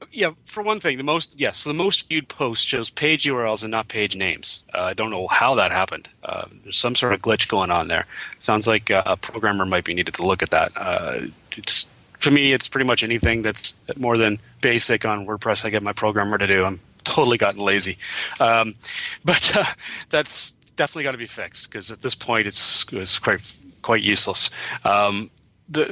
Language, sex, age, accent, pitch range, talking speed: English, male, 30-49, American, 105-130 Hz, 210 wpm